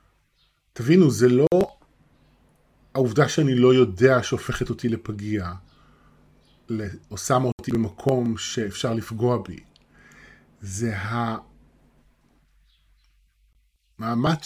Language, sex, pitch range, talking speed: Hebrew, male, 100-140 Hz, 80 wpm